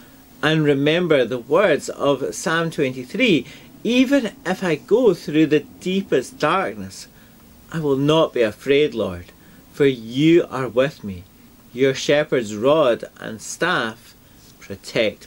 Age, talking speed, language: 40-59, 125 wpm, English